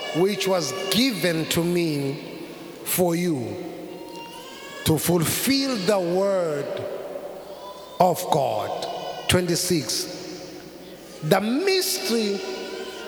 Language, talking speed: English, 75 wpm